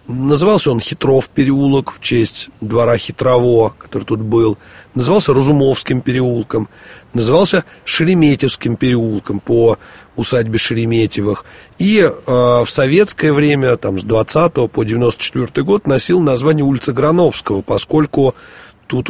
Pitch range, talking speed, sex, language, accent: 105-140 Hz, 115 wpm, male, Russian, native